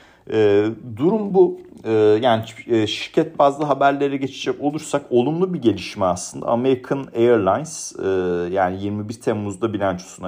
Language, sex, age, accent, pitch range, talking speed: Turkish, male, 40-59, native, 95-135 Hz, 105 wpm